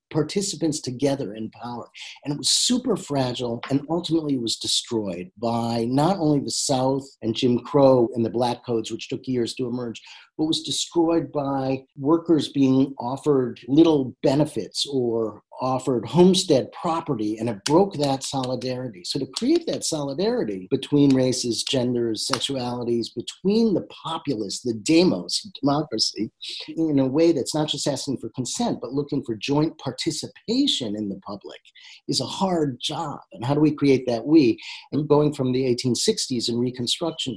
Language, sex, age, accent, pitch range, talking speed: English, male, 50-69, American, 120-155 Hz, 155 wpm